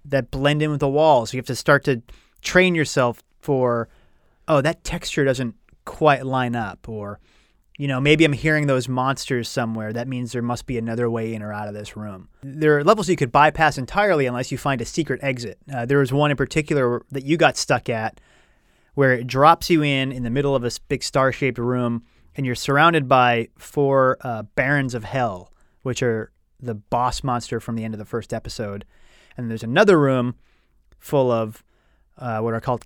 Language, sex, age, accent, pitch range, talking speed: English, male, 30-49, American, 115-145 Hz, 205 wpm